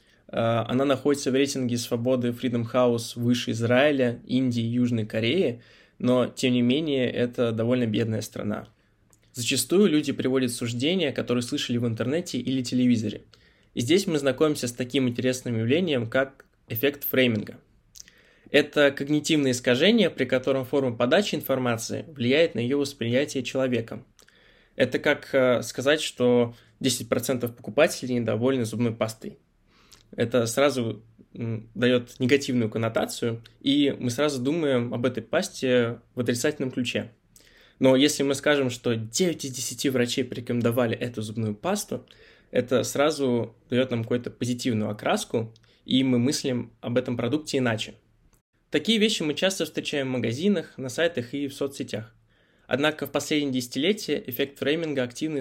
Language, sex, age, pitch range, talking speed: Russian, male, 20-39, 120-140 Hz, 135 wpm